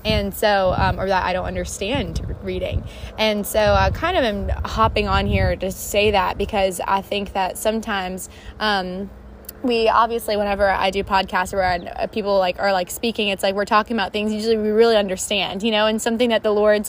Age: 20-39